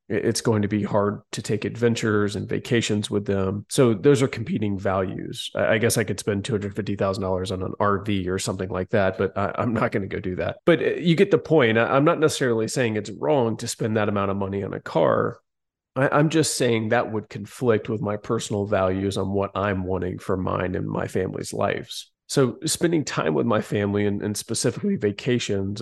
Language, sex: English, male